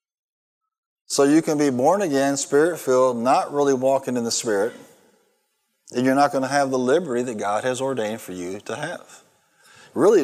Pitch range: 115-145 Hz